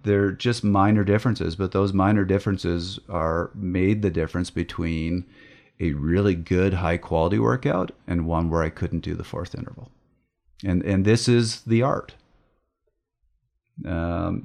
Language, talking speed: English, 145 wpm